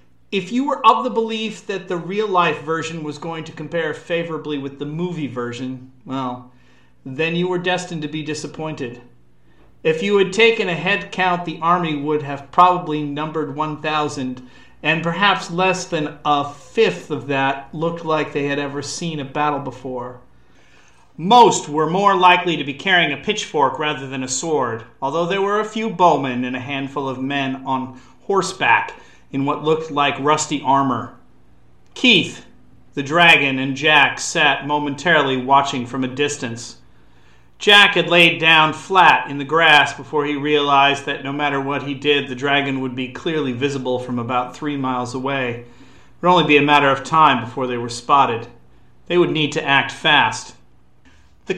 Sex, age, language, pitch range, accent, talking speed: male, 40-59, English, 130-170 Hz, American, 170 wpm